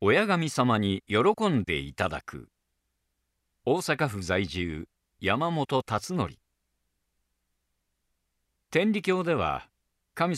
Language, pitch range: Japanese, 90-135 Hz